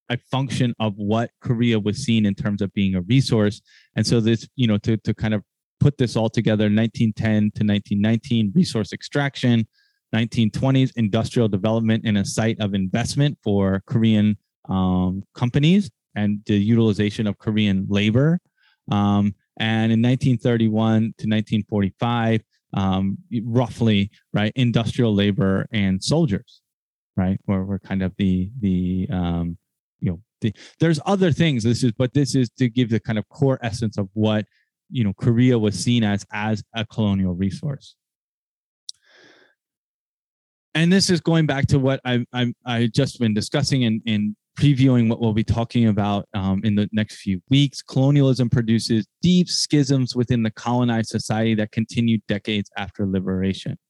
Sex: male